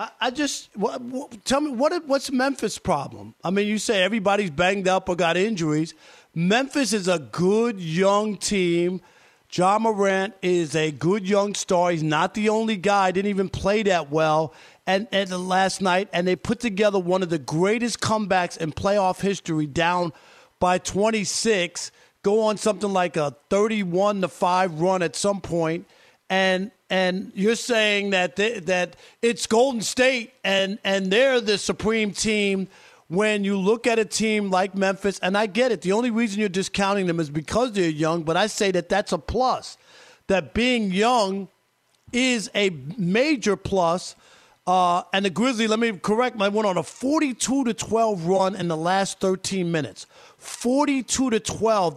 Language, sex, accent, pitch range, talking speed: English, male, American, 180-220 Hz, 175 wpm